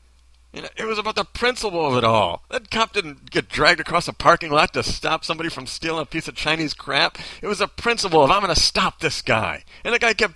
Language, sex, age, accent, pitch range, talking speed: English, male, 40-59, American, 170-245 Hz, 245 wpm